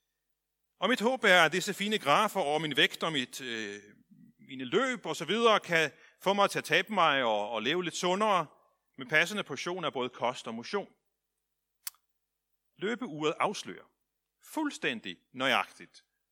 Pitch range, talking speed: 130-205 Hz, 160 wpm